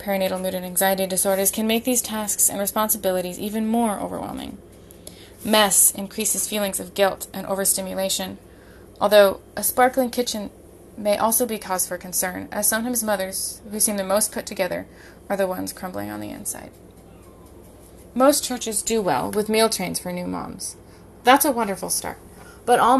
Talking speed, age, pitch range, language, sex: 165 wpm, 20-39, 170-215 Hz, English, female